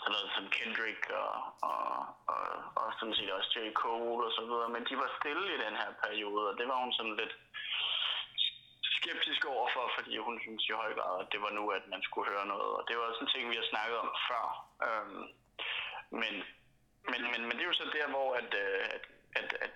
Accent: native